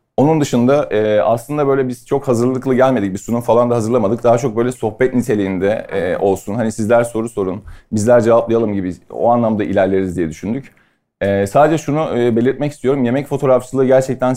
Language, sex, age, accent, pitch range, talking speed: Turkish, male, 40-59, native, 105-130 Hz, 160 wpm